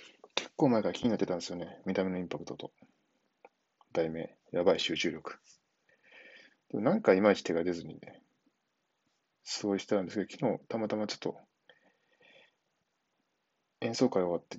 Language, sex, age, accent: Japanese, male, 20-39, native